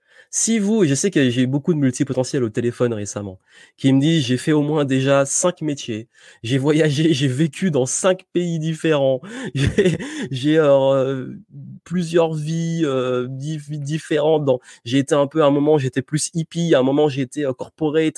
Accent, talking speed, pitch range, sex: French, 180 wpm, 125-160 Hz, male